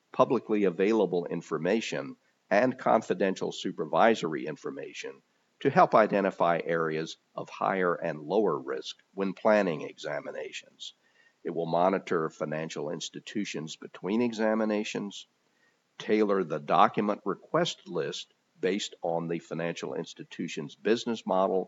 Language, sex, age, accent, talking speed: English, male, 50-69, American, 105 wpm